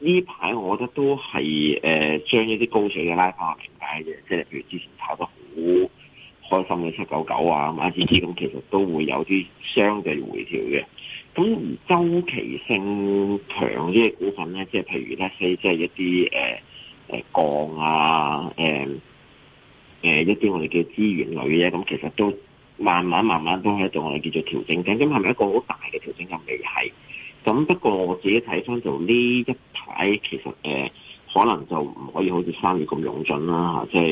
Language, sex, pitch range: Chinese, male, 80-115 Hz